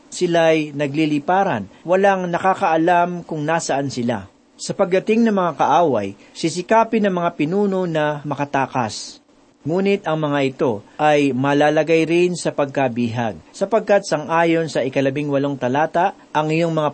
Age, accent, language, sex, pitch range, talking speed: 40-59, native, Filipino, male, 145-195 Hz, 130 wpm